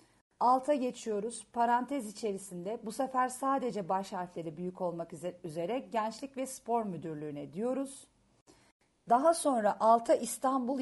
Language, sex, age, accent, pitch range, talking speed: Turkish, female, 40-59, native, 185-250 Hz, 115 wpm